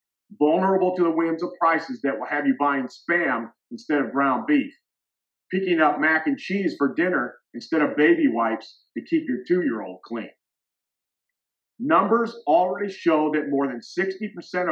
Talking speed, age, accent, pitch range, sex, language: 160 wpm, 50-69, American, 135-190 Hz, male, English